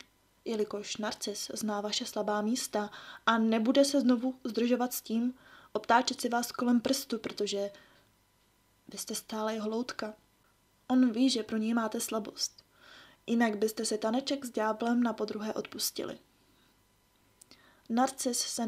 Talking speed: 135 wpm